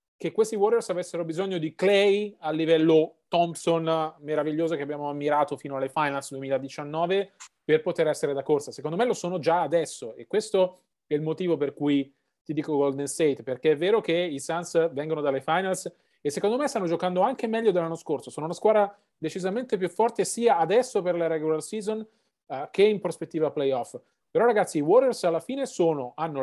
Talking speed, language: 185 wpm, Italian